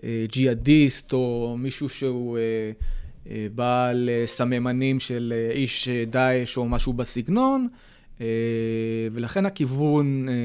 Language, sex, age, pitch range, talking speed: Hebrew, male, 20-39, 110-130 Hz, 80 wpm